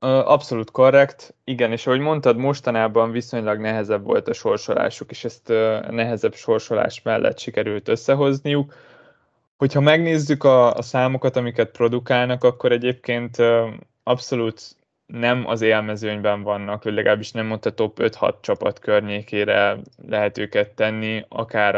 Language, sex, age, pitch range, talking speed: Hungarian, male, 20-39, 105-125 Hz, 120 wpm